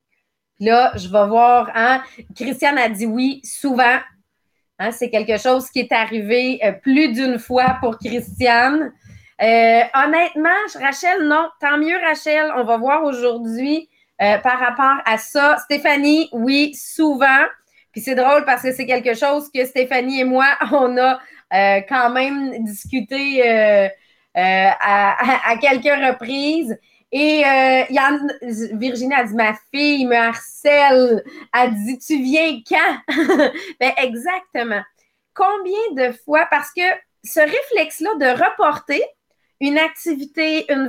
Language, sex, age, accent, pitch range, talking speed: English, female, 30-49, Canadian, 245-310 Hz, 140 wpm